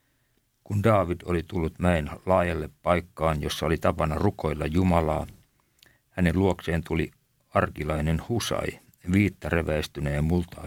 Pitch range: 75-100 Hz